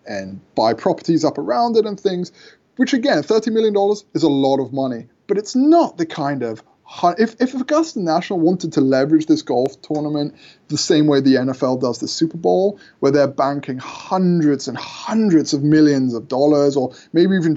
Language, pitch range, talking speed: English, 145-215 Hz, 190 wpm